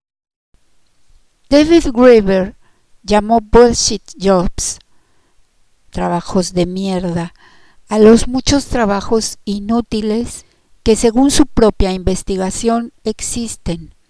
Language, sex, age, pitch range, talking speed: Spanish, female, 50-69, 185-225 Hz, 80 wpm